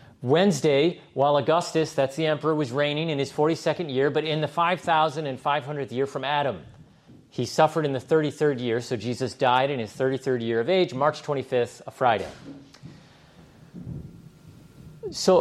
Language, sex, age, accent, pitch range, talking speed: English, male, 40-59, American, 135-185 Hz, 150 wpm